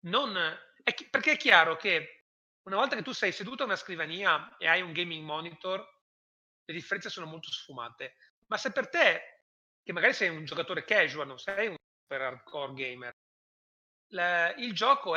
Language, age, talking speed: Italian, 30-49, 180 wpm